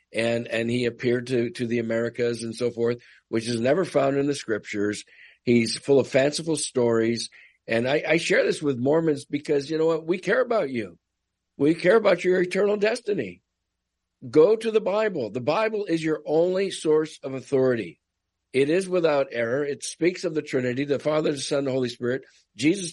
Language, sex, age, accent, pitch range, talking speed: English, male, 50-69, American, 120-160 Hz, 190 wpm